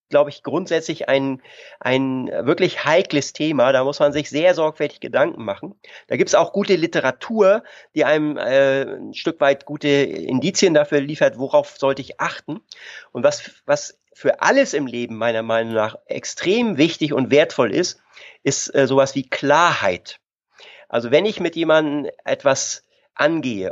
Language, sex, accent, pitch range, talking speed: German, male, German, 130-160 Hz, 160 wpm